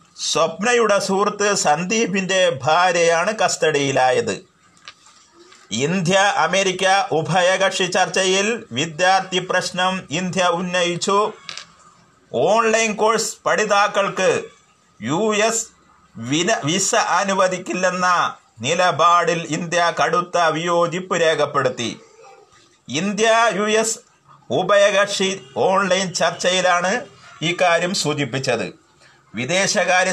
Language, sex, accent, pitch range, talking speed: Malayalam, male, native, 165-200 Hz, 65 wpm